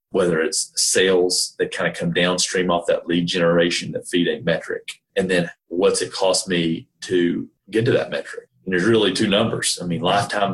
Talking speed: 200 wpm